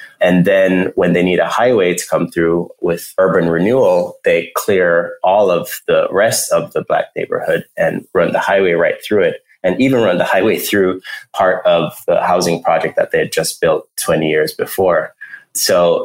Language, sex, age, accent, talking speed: English, male, 30-49, American, 185 wpm